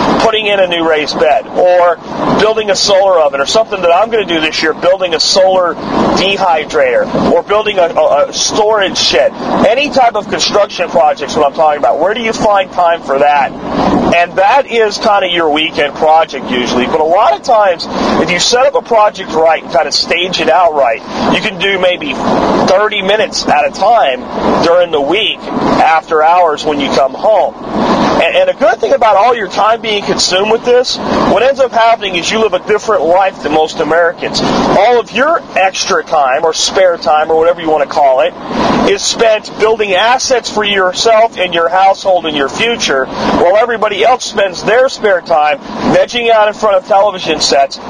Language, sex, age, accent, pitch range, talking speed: English, male, 40-59, American, 175-230 Hz, 200 wpm